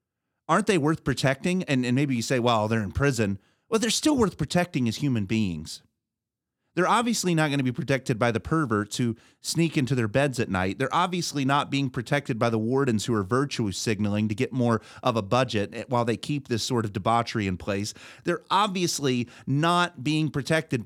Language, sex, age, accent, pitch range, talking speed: English, male, 30-49, American, 115-150 Hz, 200 wpm